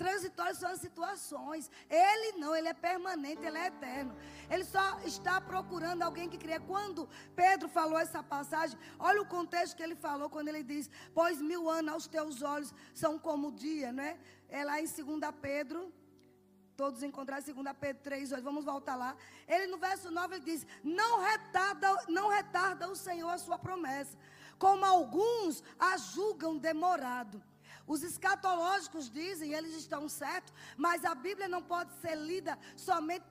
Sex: female